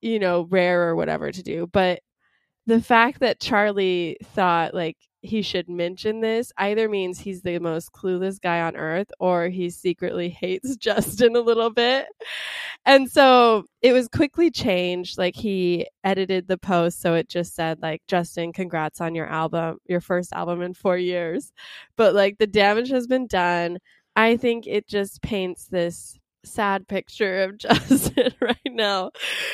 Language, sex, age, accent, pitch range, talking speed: English, female, 20-39, American, 175-220 Hz, 165 wpm